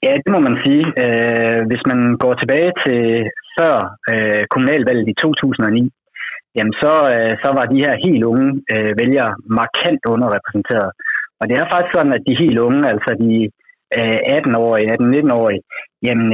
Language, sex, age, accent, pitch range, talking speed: Danish, male, 30-49, native, 110-140 Hz, 160 wpm